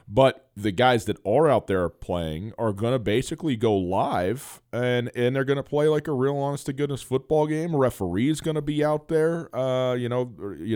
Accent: American